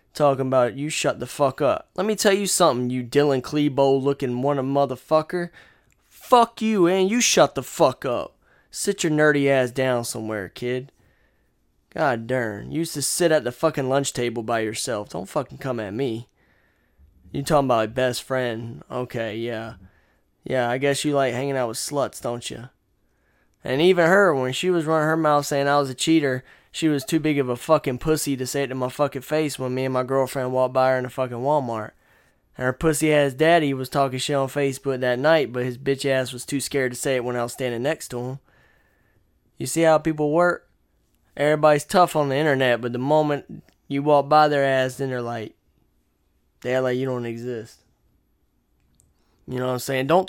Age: 20-39